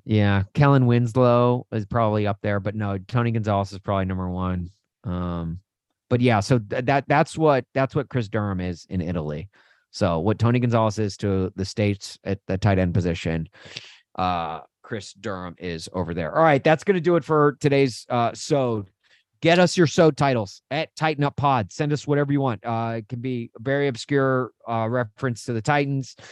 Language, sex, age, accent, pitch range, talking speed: English, male, 30-49, American, 100-135 Hz, 190 wpm